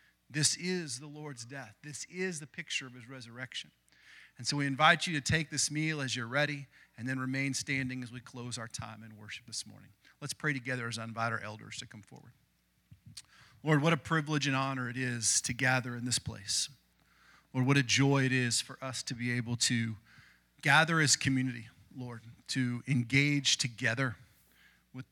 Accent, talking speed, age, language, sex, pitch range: American, 195 wpm, 40-59, English, male, 120-145 Hz